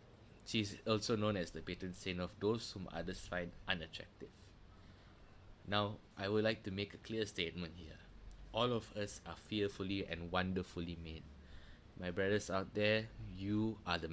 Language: English